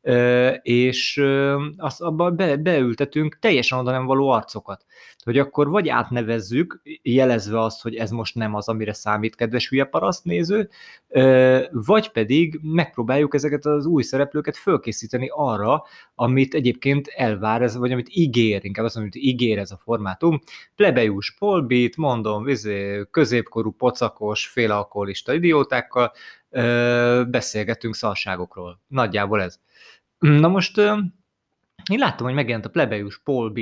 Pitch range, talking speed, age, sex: 110-150 Hz, 125 wpm, 20-39, male